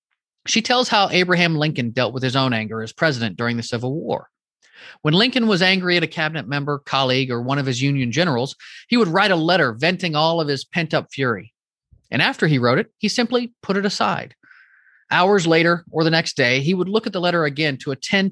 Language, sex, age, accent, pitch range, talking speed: English, male, 30-49, American, 135-190 Hz, 220 wpm